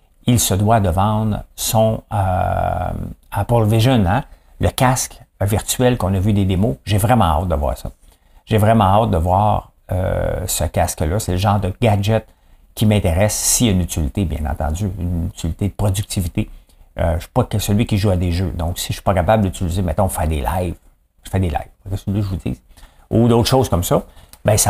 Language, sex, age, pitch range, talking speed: English, male, 50-69, 85-105 Hz, 220 wpm